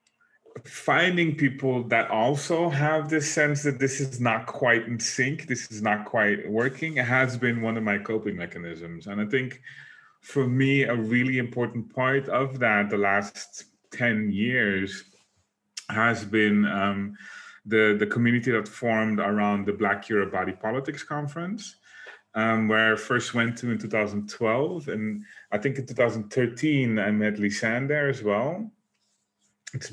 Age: 30-49